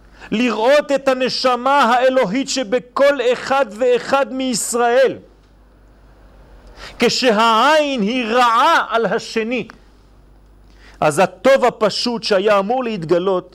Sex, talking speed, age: male, 85 wpm, 40-59